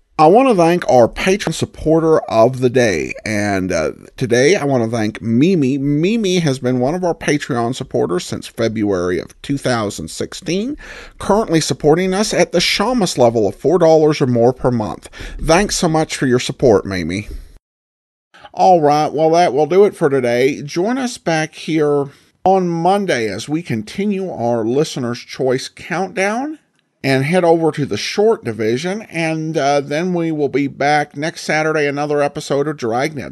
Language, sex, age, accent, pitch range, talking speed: English, male, 50-69, American, 120-170 Hz, 165 wpm